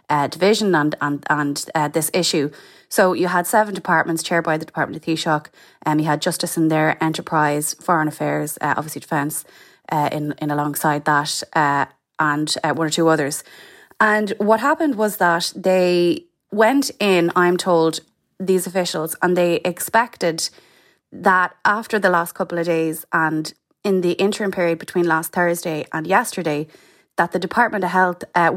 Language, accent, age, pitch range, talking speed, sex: English, Irish, 20-39, 160-185 Hz, 170 wpm, female